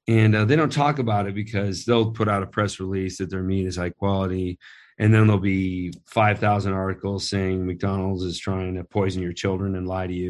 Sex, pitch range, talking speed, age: male, 90-105 Hz, 220 wpm, 40-59